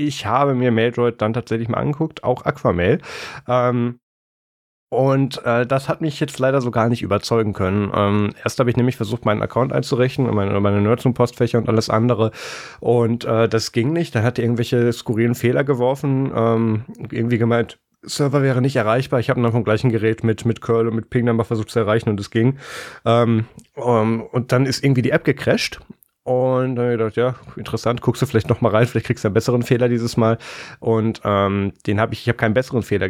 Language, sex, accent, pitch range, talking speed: German, male, German, 110-130 Hz, 210 wpm